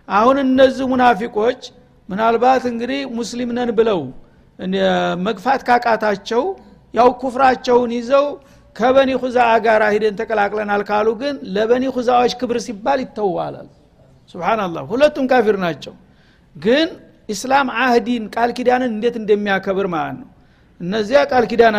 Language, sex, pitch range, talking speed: Amharic, male, 215-255 Hz, 110 wpm